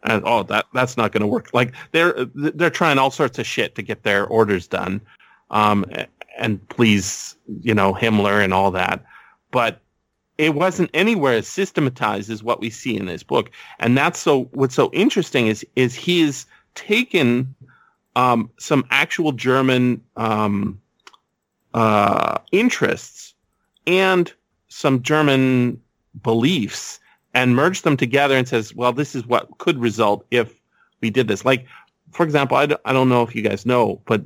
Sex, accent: male, American